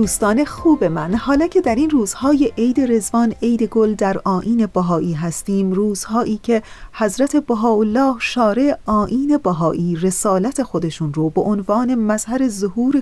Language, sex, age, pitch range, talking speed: Persian, female, 30-49, 180-250 Hz, 145 wpm